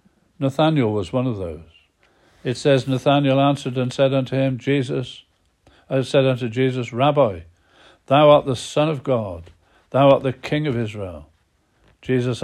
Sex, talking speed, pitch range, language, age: male, 155 wpm, 115-145 Hz, English, 60-79